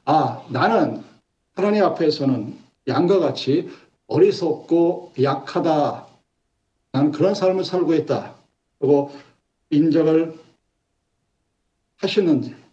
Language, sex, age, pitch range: Korean, male, 50-69, 145-230 Hz